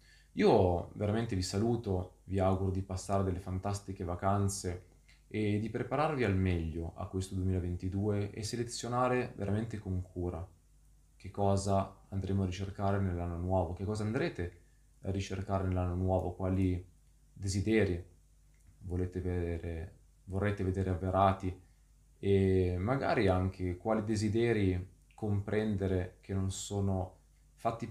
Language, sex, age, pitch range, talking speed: Italian, male, 20-39, 90-105 Hz, 120 wpm